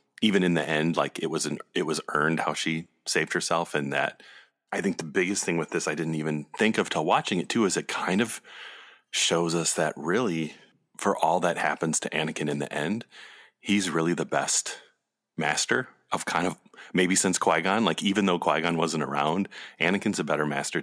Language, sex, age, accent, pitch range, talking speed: English, male, 30-49, American, 80-95 Hz, 205 wpm